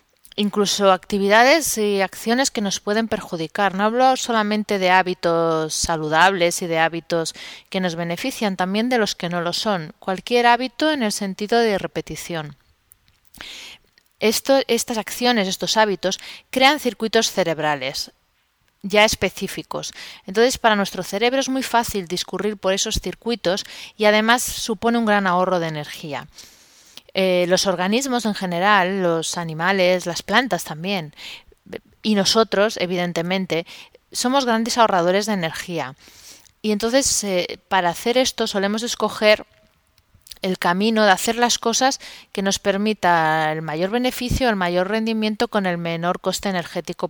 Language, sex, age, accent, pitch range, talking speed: Spanish, female, 30-49, Spanish, 175-225 Hz, 140 wpm